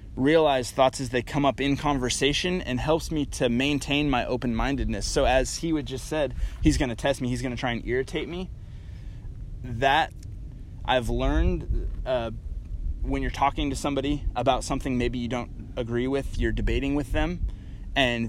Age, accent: 20-39, American